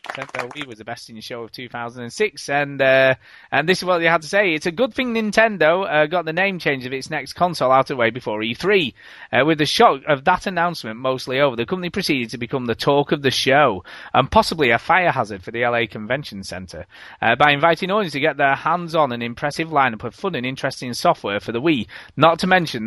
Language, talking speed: English, 240 wpm